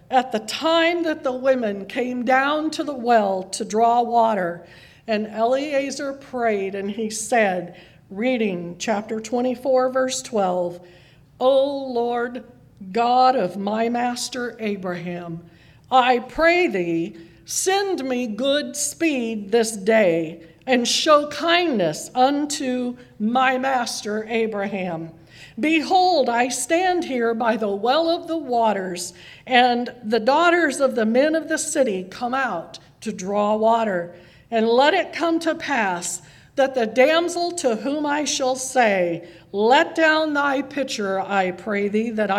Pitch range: 200-275 Hz